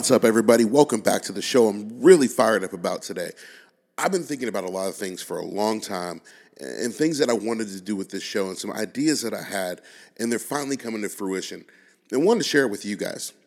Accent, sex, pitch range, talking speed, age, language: American, male, 90-115 Hz, 255 wpm, 40-59, English